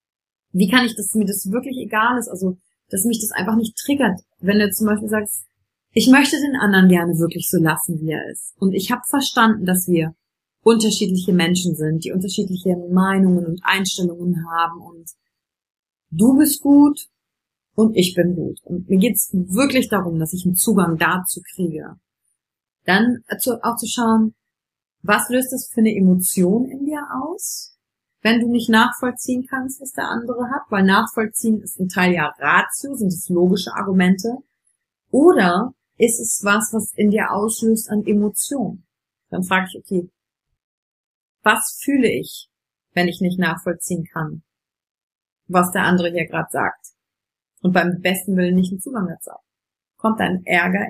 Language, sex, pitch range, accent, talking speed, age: German, female, 180-225 Hz, German, 165 wpm, 30-49